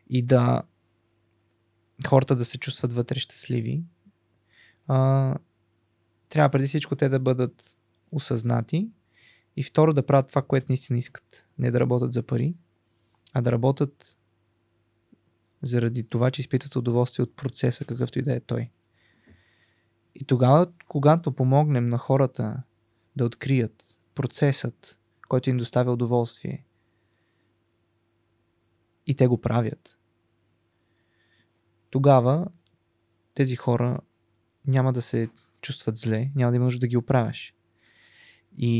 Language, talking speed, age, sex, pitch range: Bulgarian, 120 wpm, 20-39, male, 115-135 Hz